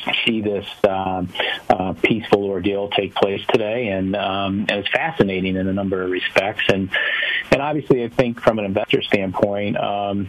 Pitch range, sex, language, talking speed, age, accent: 95-110 Hz, male, English, 165 wpm, 40-59, American